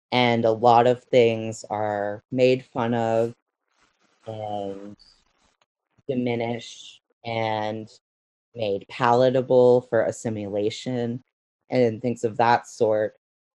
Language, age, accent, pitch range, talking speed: English, 30-49, American, 110-130 Hz, 95 wpm